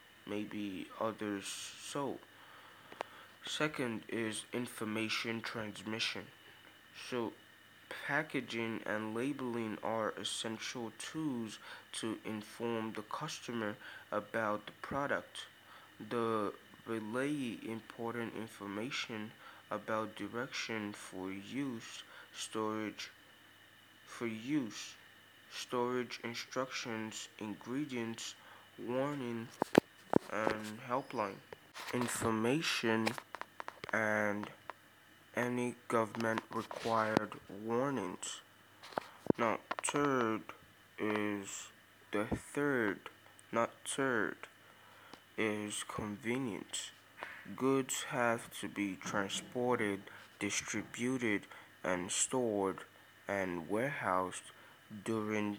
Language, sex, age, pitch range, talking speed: English, male, 20-39, 105-120 Hz, 70 wpm